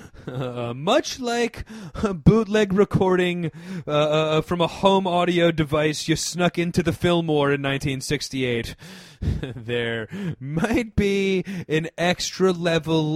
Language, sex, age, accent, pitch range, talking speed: English, male, 30-49, American, 125-185 Hz, 120 wpm